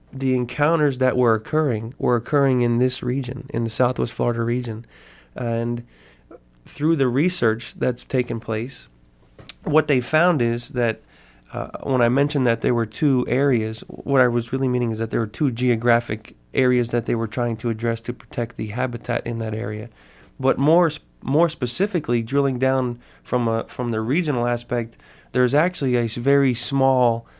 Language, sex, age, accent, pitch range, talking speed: English, male, 30-49, American, 115-135 Hz, 175 wpm